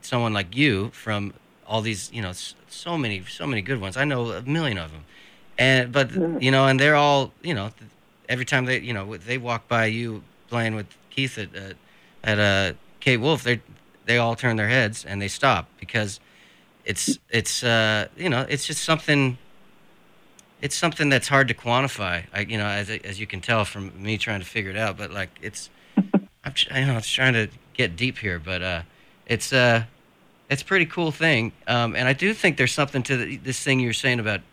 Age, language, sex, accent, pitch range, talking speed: 30-49, English, male, American, 105-135 Hz, 205 wpm